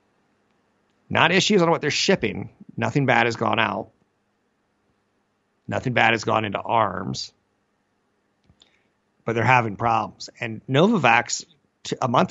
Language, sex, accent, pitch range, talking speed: English, male, American, 110-130 Hz, 120 wpm